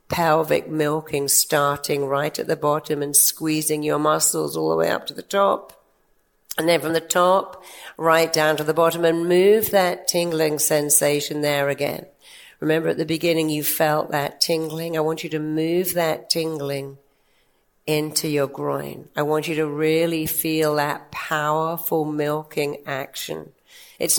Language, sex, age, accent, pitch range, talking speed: English, female, 50-69, British, 150-170 Hz, 160 wpm